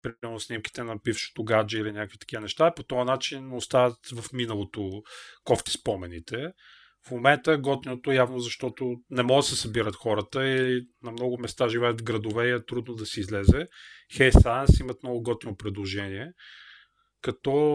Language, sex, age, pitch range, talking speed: Bulgarian, male, 30-49, 110-130 Hz, 155 wpm